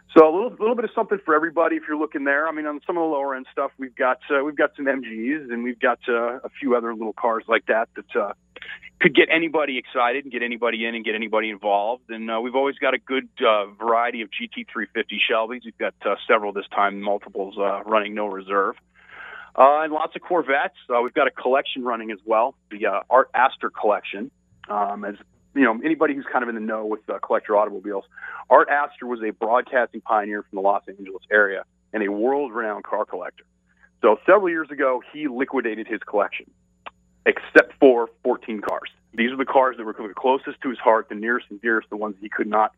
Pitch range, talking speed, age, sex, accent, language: 110-140 Hz, 220 wpm, 40-59, male, American, English